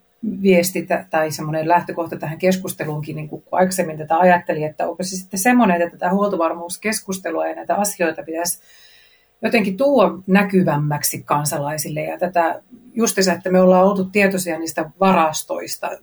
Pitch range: 160-185 Hz